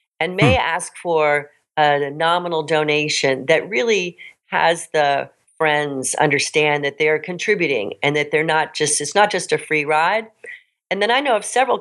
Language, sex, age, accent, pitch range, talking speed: English, female, 50-69, American, 145-185 Hz, 175 wpm